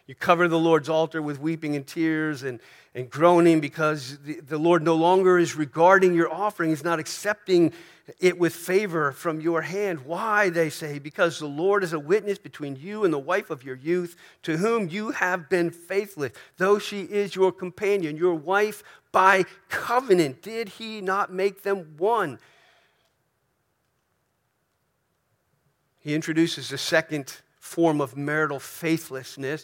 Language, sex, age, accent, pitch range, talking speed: English, male, 50-69, American, 150-185 Hz, 155 wpm